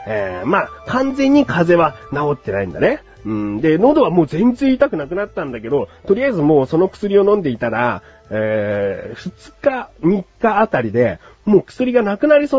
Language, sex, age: Japanese, male, 40-59